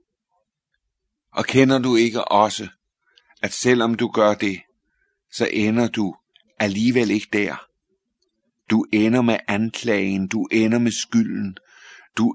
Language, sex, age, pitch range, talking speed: Danish, male, 50-69, 105-125 Hz, 120 wpm